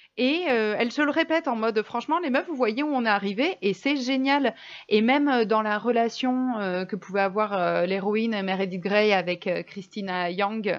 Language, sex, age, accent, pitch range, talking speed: French, female, 30-49, French, 200-255 Hz, 215 wpm